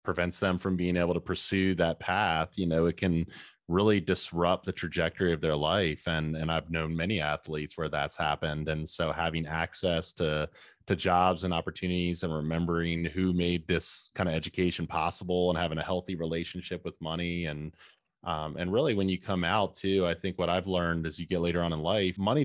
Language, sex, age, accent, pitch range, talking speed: English, male, 30-49, American, 80-95 Hz, 205 wpm